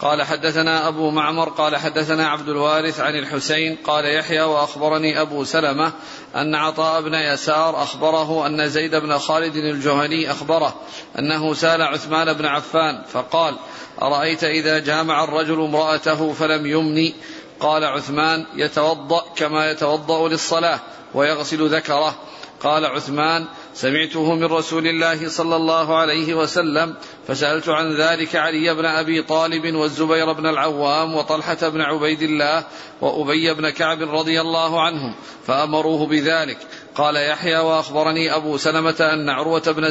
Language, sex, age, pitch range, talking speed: Arabic, male, 40-59, 150-160 Hz, 130 wpm